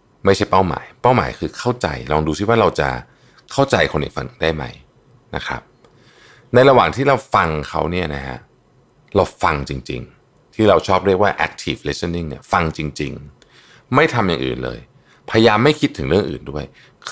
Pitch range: 75-120 Hz